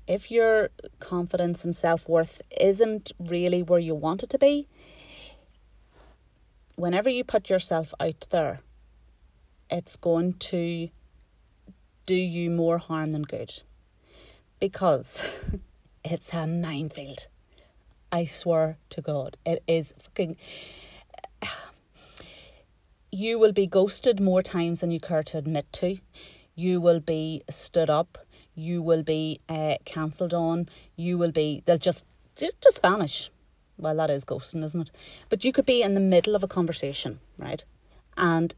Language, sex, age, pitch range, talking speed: English, female, 30-49, 160-200 Hz, 135 wpm